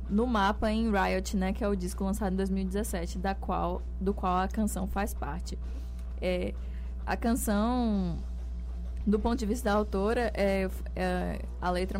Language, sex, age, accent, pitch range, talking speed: Portuguese, female, 20-39, Brazilian, 180-220 Hz, 165 wpm